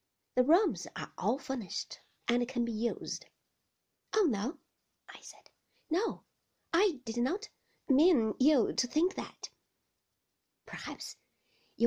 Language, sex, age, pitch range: Chinese, female, 30-49, 220-350 Hz